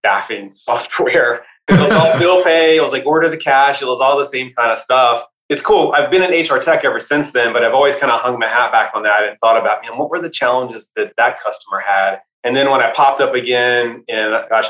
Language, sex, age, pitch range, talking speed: English, male, 20-39, 105-135 Hz, 255 wpm